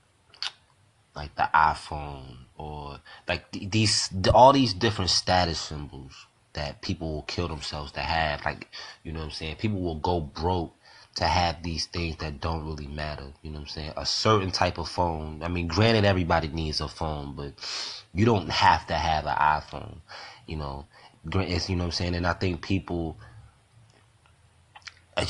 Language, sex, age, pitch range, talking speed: English, male, 20-39, 75-95 Hz, 175 wpm